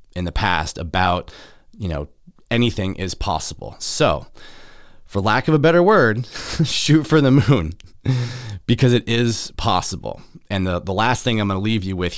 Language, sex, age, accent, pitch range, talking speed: English, male, 30-49, American, 90-120 Hz, 170 wpm